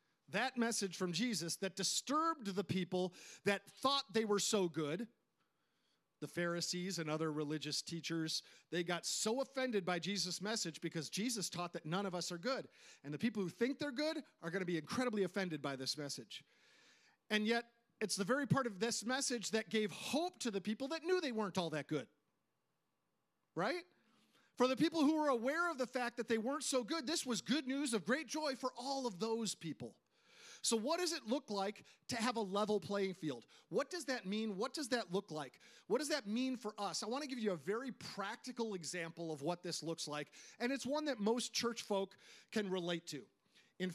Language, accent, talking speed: English, American, 210 wpm